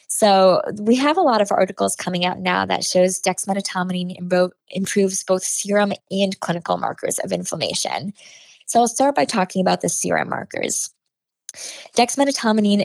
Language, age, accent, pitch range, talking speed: English, 20-39, American, 180-210 Hz, 145 wpm